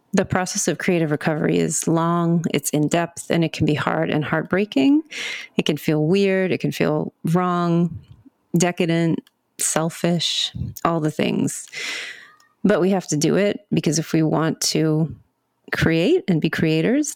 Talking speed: 155 wpm